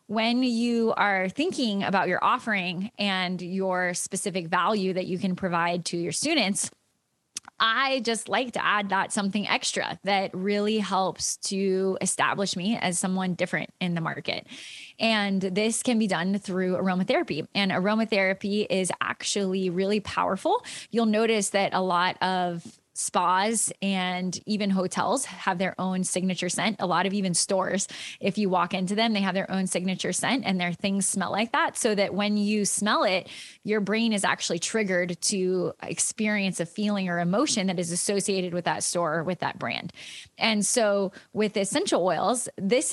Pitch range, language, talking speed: 185-220 Hz, English, 170 wpm